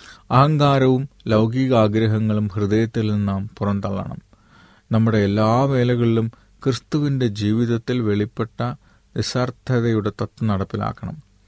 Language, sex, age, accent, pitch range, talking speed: Malayalam, male, 30-49, native, 105-120 Hz, 75 wpm